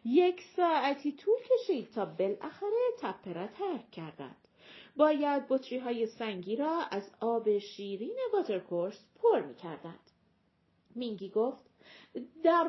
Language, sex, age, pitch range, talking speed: Persian, female, 40-59, 215-340 Hz, 115 wpm